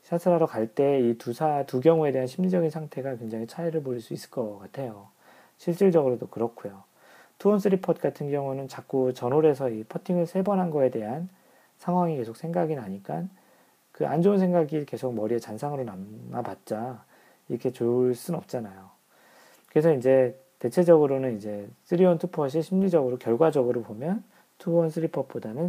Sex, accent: male, native